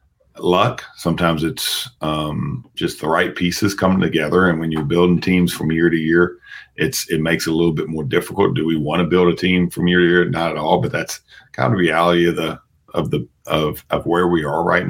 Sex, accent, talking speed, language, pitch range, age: male, American, 235 wpm, English, 80-90 Hz, 40-59